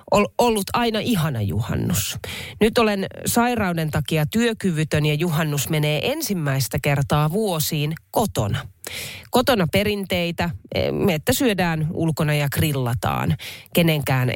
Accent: native